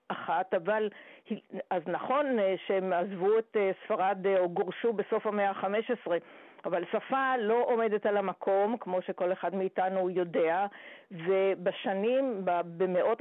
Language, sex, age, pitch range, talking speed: Hebrew, female, 50-69, 185-225 Hz, 120 wpm